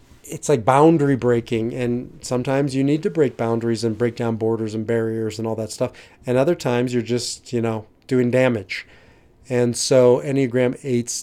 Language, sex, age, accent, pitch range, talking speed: English, male, 30-49, American, 115-130 Hz, 180 wpm